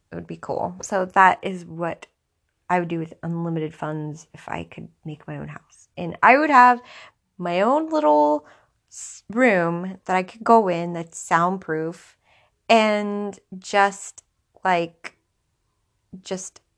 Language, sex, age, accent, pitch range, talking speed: English, female, 20-39, American, 165-190 Hz, 145 wpm